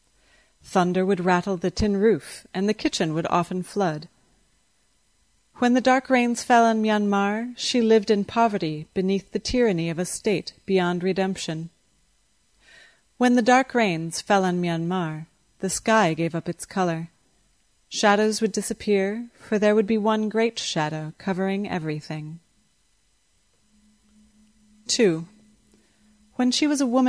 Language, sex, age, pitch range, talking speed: English, female, 30-49, 175-220 Hz, 135 wpm